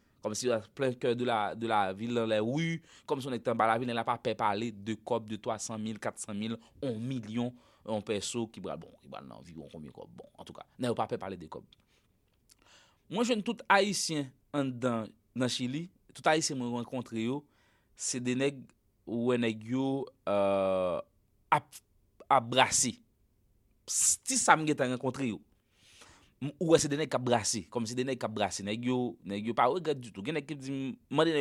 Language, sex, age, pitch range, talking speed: English, male, 30-49, 110-140 Hz, 160 wpm